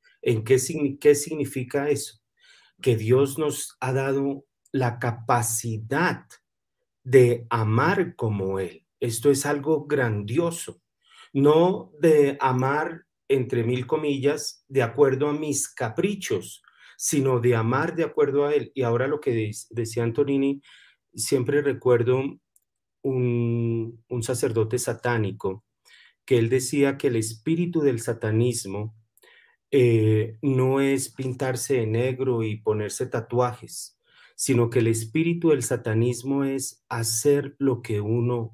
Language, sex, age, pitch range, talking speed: Spanish, male, 40-59, 115-140 Hz, 120 wpm